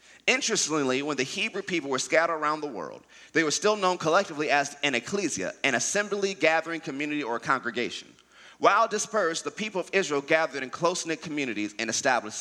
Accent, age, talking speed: American, 30-49, 175 wpm